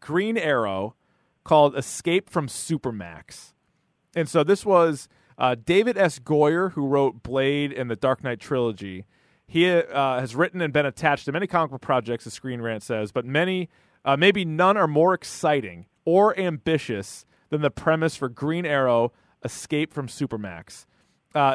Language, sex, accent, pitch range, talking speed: English, male, American, 130-170 Hz, 160 wpm